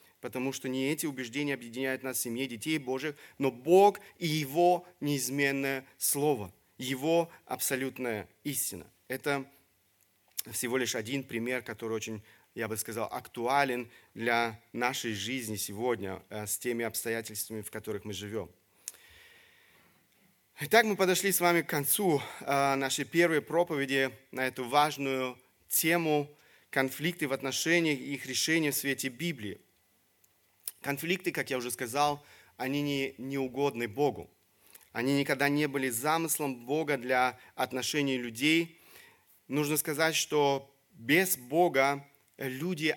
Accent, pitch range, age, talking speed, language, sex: native, 125-150 Hz, 30-49, 125 wpm, Russian, male